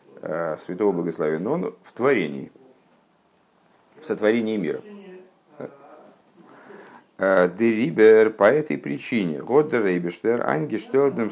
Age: 50-69